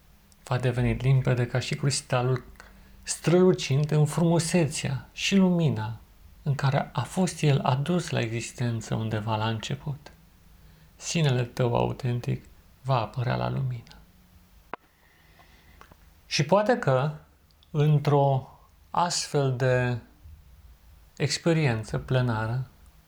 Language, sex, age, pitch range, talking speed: Romanian, male, 40-59, 90-145 Hz, 95 wpm